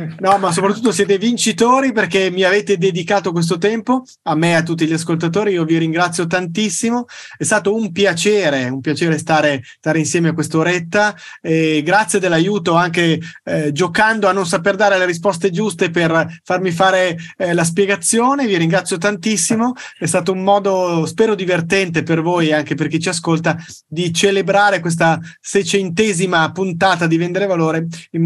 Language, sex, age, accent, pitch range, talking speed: Italian, male, 30-49, native, 160-200 Hz, 165 wpm